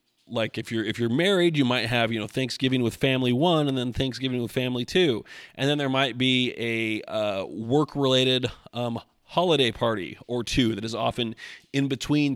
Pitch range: 110-130 Hz